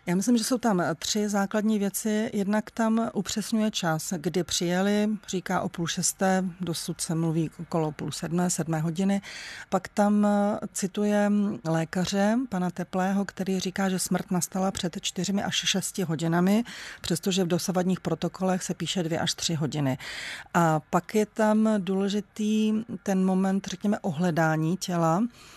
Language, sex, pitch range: Czech, female, 175-205 Hz